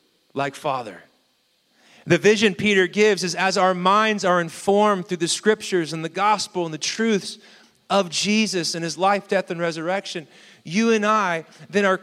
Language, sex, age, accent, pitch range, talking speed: English, male, 30-49, American, 150-200 Hz, 170 wpm